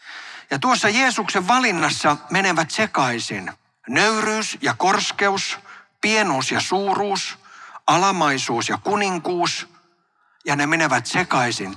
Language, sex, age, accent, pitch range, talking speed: Finnish, male, 60-79, native, 130-185 Hz, 95 wpm